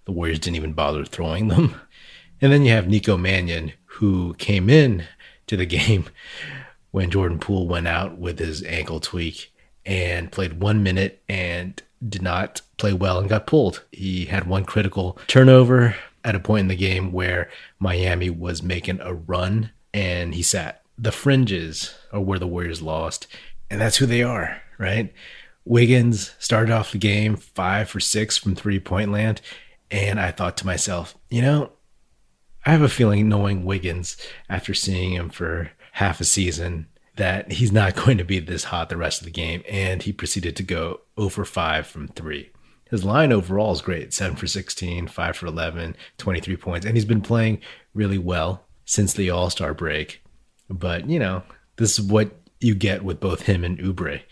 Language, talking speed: English, 180 wpm